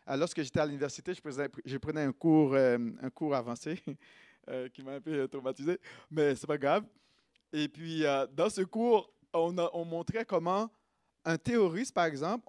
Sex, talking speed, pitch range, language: male, 180 wpm, 145-215 Hz, French